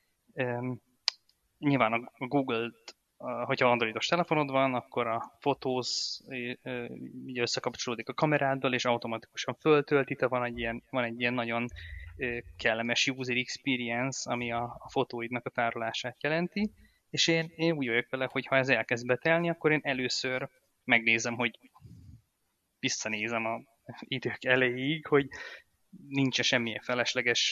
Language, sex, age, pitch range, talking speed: Hungarian, male, 20-39, 120-140 Hz, 135 wpm